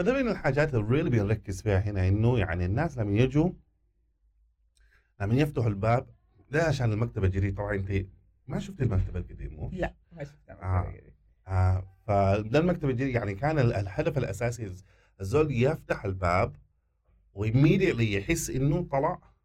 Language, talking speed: Arabic, 130 wpm